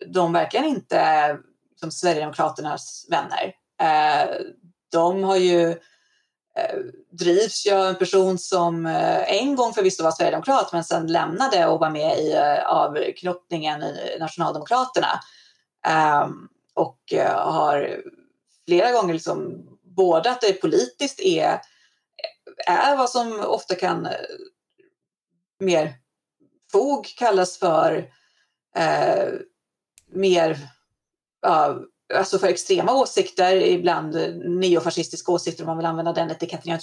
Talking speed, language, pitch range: 105 wpm, Swedish, 170-270 Hz